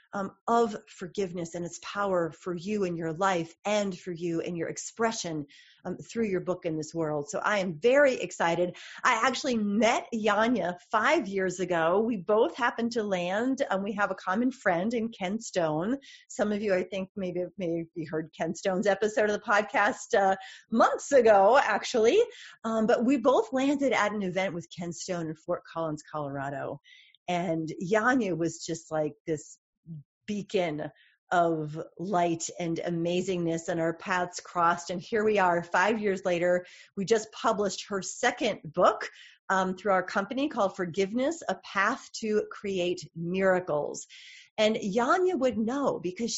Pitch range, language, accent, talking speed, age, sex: 175-235 Hz, English, American, 165 wpm, 30-49, female